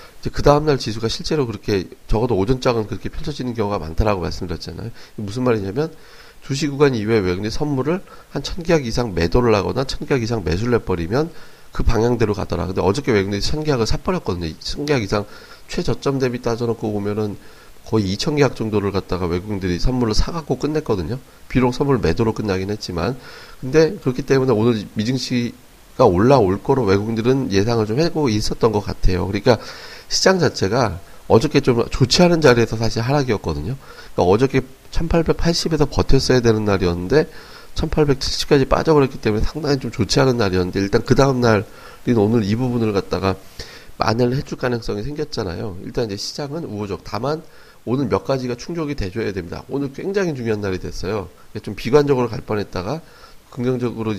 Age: 30-49